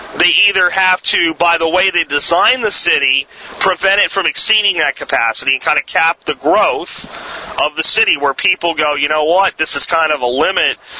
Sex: male